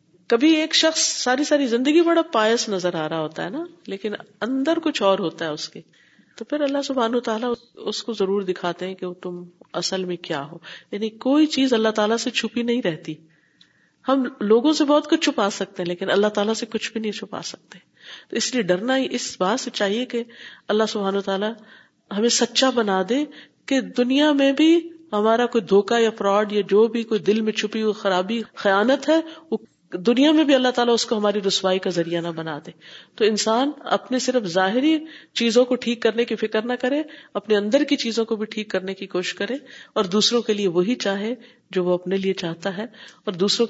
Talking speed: 210 wpm